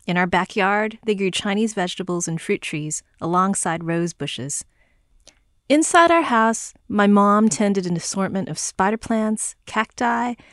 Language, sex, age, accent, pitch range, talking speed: English, female, 30-49, American, 165-215 Hz, 140 wpm